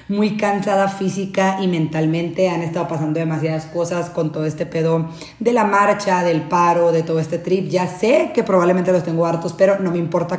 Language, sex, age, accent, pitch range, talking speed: Spanish, female, 30-49, Mexican, 175-205 Hz, 195 wpm